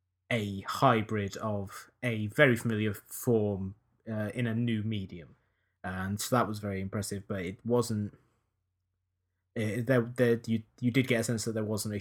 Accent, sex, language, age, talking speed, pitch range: British, male, English, 20-39, 155 wpm, 100-115 Hz